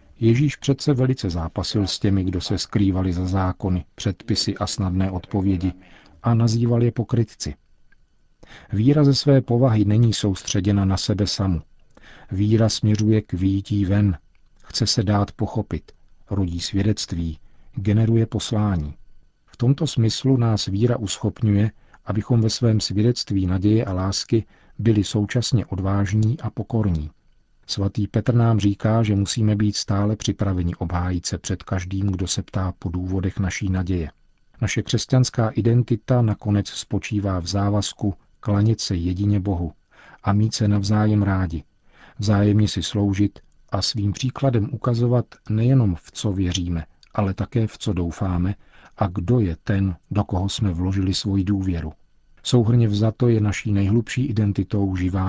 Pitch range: 95-110 Hz